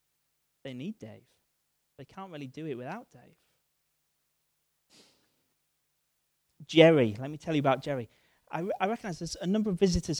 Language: English